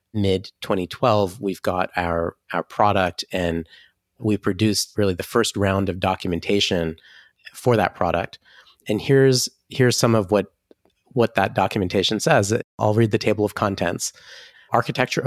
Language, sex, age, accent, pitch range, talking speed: English, male, 30-49, American, 100-120 Hz, 140 wpm